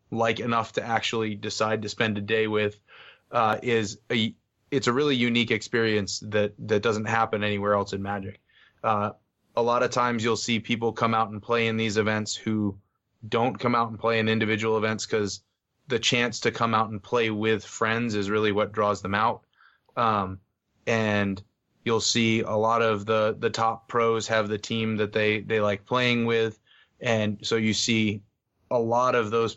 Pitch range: 105-115 Hz